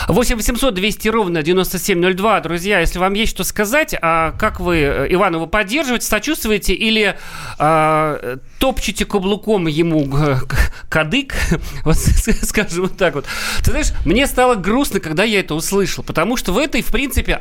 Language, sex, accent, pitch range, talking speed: Russian, male, native, 175-235 Hz, 145 wpm